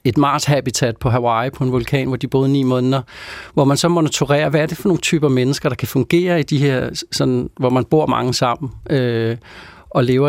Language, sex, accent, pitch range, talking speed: Danish, male, native, 125-155 Hz, 220 wpm